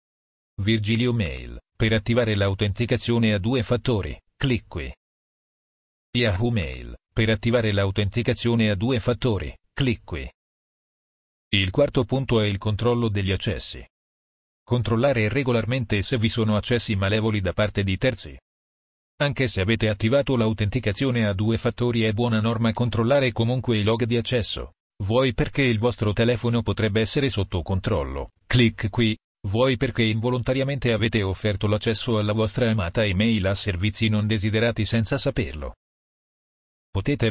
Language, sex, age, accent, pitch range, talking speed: Italian, male, 40-59, native, 105-120 Hz, 135 wpm